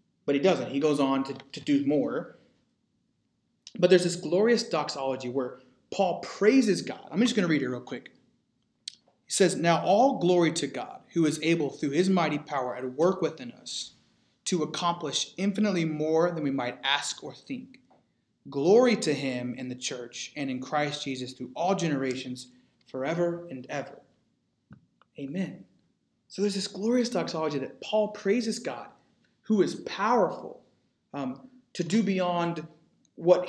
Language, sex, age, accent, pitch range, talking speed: English, male, 30-49, American, 145-210 Hz, 160 wpm